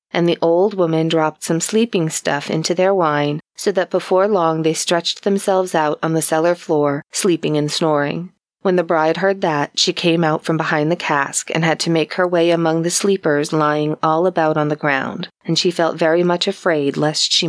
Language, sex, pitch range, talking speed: English, female, 155-190 Hz, 210 wpm